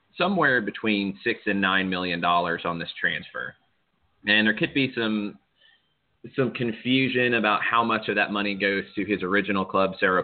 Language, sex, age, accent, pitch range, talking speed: English, male, 30-49, American, 90-105 Hz, 170 wpm